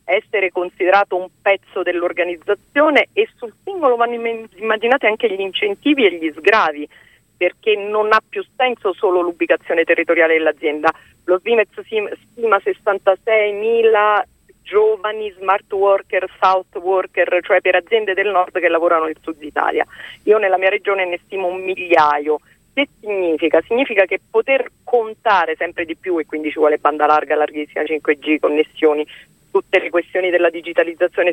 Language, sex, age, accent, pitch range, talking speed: Italian, female, 40-59, native, 165-220 Hz, 145 wpm